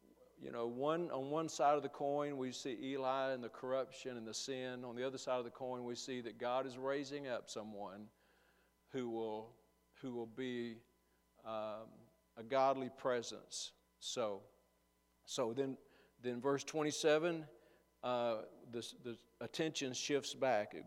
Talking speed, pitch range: 150 wpm, 115-140 Hz